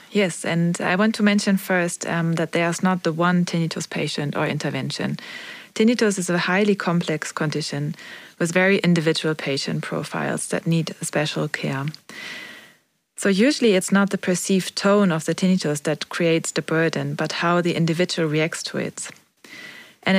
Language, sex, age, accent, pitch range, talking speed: English, female, 30-49, German, 160-195 Hz, 165 wpm